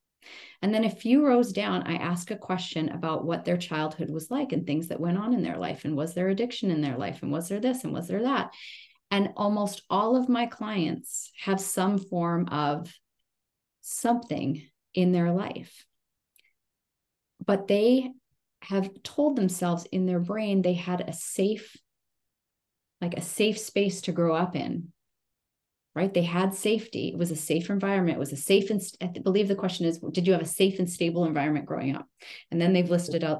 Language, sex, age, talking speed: English, female, 30-49, 190 wpm